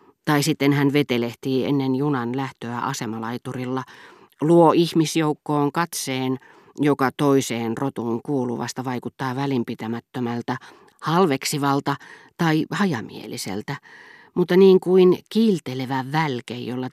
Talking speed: 90 wpm